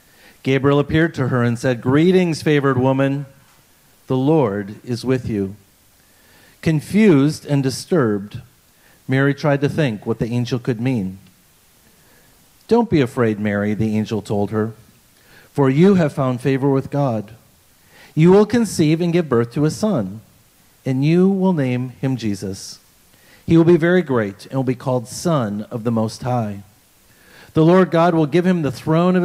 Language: English